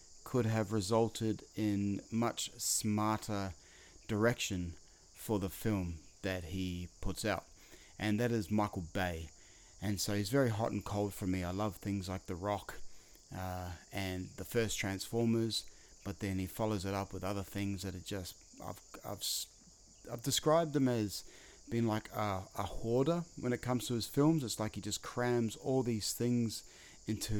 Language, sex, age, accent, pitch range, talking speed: English, male, 30-49, Australian, 95-115 Hz, 170 wpm